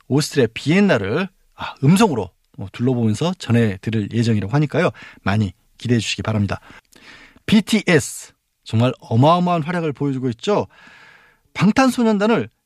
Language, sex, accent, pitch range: Korean, male, native, 125-205 Hz